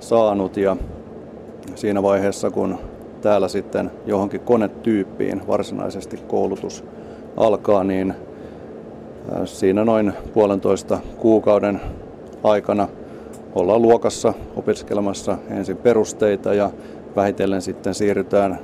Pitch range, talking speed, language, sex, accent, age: 100-110 Hz, 85 wpm, Finnish, male, native, 30-49